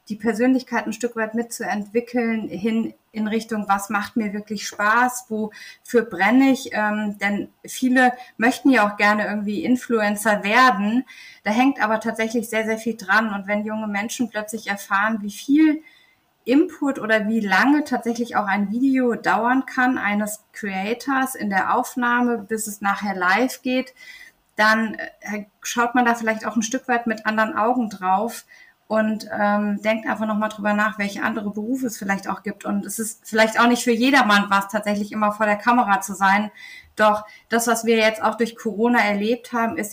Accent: German